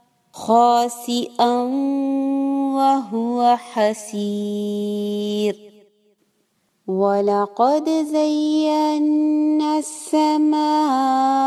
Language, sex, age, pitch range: English, female, 30-49, 210-260 Hz